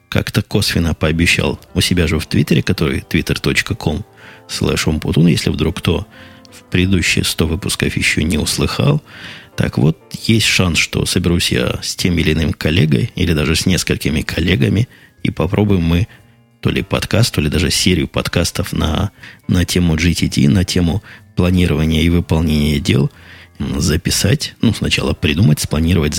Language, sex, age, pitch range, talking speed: Russian, male, 20-39, 80-105 Hz, 145 wpm